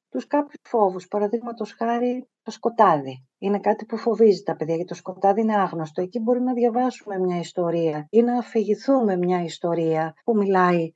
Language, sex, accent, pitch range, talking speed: Greek, female, native, 165-215 Hz, 170 wpm